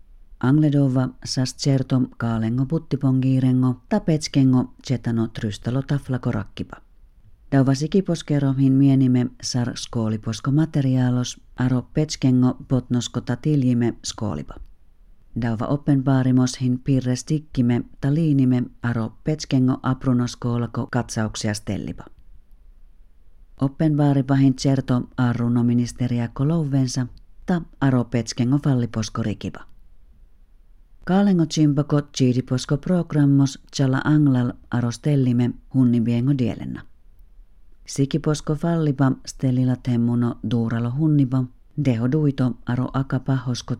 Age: 40-59